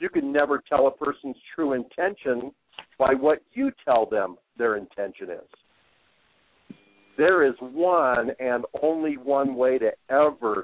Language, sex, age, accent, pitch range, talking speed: English, male, 60-79, American, 110-145 Hz, 140 wpm